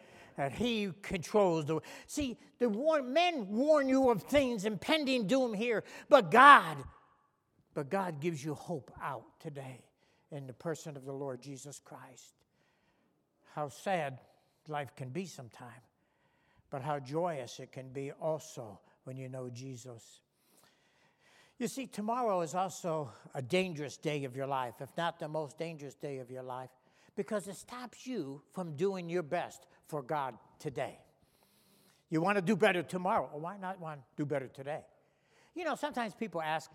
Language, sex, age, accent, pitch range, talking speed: English, male, 60-79, American, 140-200 Hz, 165 wpm